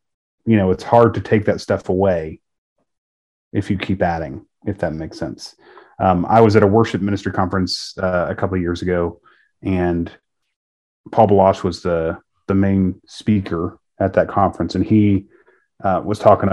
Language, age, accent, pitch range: English, 30-49, American, 90-110 Hz